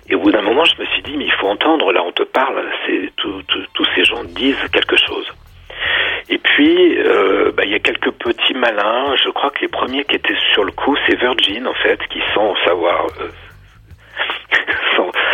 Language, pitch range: French, 350-445 Hz